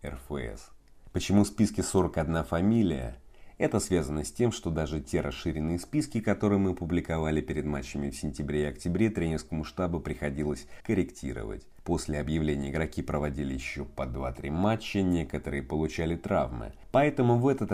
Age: 30-49